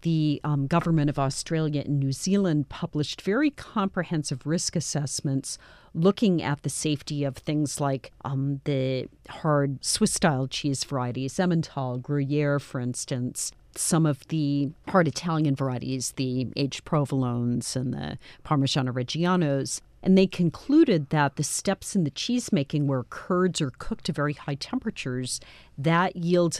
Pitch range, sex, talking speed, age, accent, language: 135-165 Hz, female, 140 wpm, 40-59, American, English